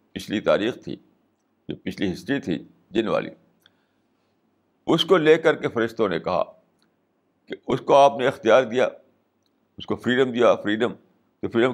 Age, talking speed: 60-79, 155 wpm